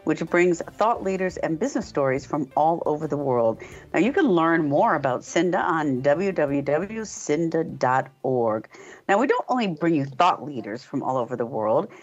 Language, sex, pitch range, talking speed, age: English, female, 140-200 Hz, 170 wpm, 50-69